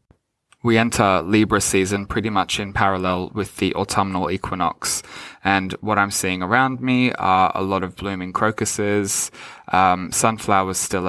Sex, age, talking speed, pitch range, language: male, 20-39, 145 wpm, 90-105 Hz, English